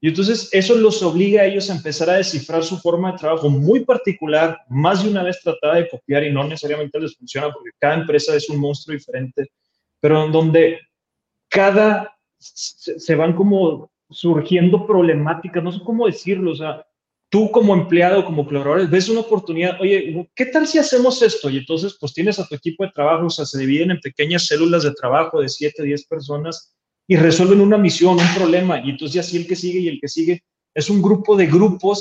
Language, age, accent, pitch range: Spanish, 30-49, Mexican, 150-185 Hz